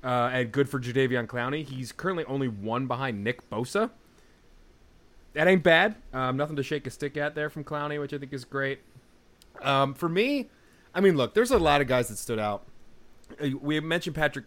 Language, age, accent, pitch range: English, 30-49, American, 110-135 Hz